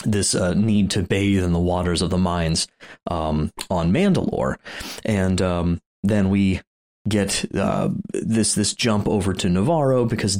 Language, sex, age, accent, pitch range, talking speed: English, male, 30-49, American, 90-110 Hz, 155 wpm